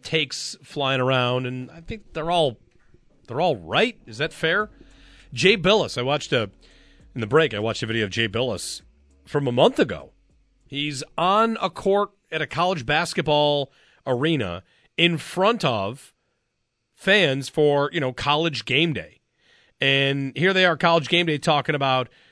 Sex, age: male, 40-59